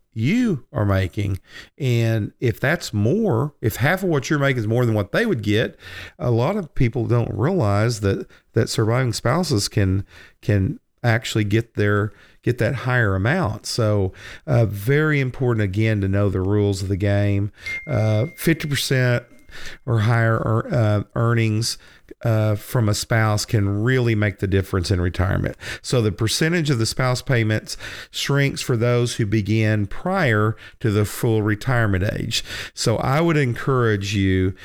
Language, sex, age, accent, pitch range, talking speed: English, male, 50-69, American, 105-130 Hz, 160 wpm